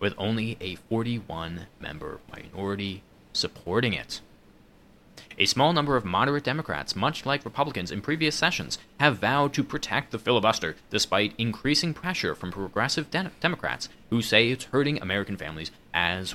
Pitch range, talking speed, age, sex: 100-145 Hz, 145 wpm, 30-49, male